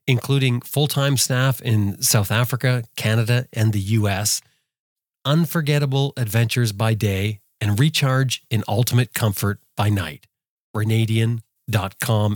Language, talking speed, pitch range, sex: English, 110 wpm, 110-140 Hz, male